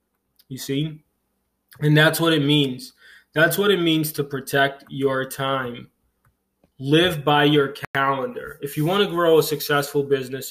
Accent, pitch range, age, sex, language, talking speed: American, 130-150 Hz, 20-39, male, English, 155 wpm